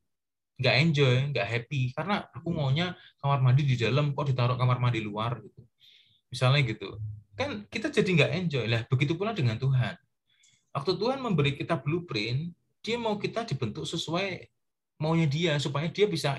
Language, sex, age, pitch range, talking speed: Indonesian, male, 30-49, 110-140 Hz, 160 wpm